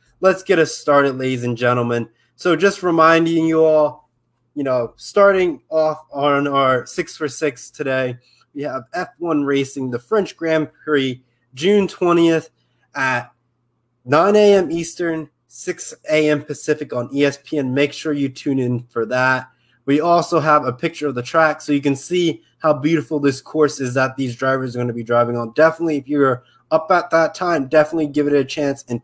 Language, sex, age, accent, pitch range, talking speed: English, male, 20-39, American, 130-165 Hz, 180 wpm